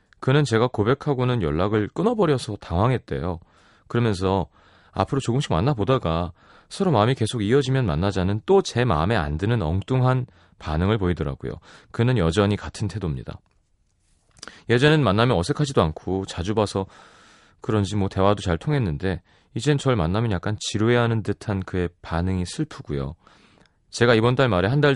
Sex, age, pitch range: male, 30-49, 90-130 Hz